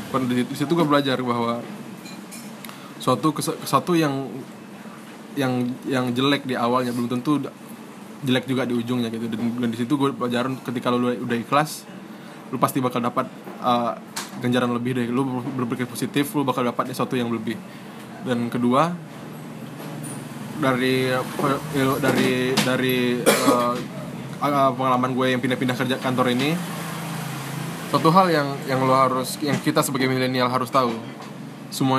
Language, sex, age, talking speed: Indonesian, male, 20-39, 135 wpm